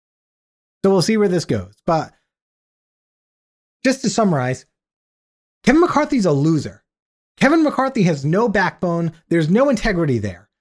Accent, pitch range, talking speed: American, 150-205 Hz, 130 wpm